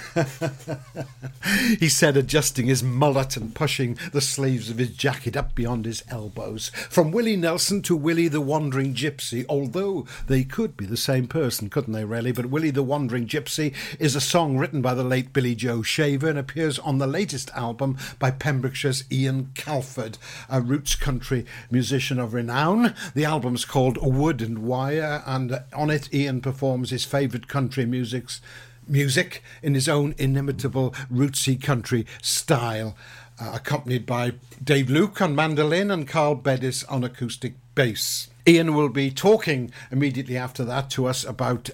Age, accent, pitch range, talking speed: 60-79, British, 125-145 Hz, 160 wpm